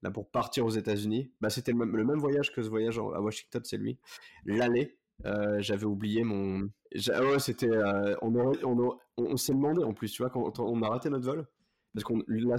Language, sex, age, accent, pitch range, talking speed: French, male, 20-39, French, 100-120 Hz, 235 wpm